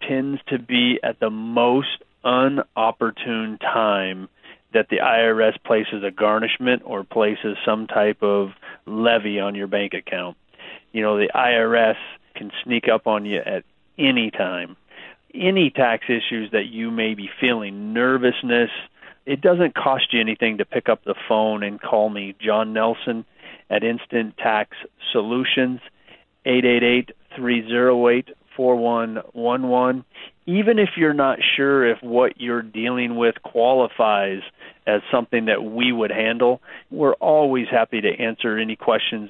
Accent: American